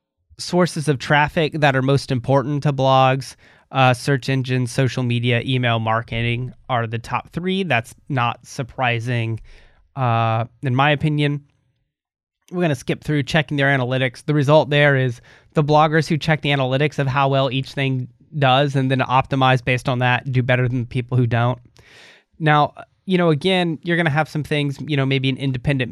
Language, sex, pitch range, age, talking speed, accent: English, male, 125-145 Hz, 30-49, 185 wpm, American